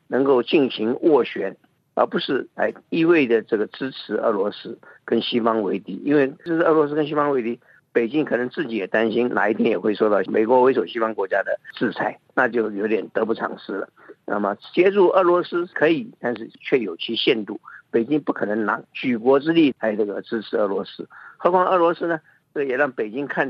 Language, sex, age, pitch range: Chinese, male, 50-69, 115-155 Hz